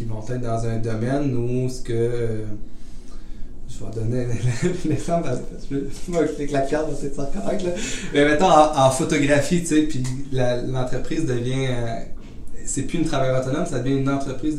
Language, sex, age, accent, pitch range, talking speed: French, male, 30-49, Canadian, 115-135 Hz, 185 wpm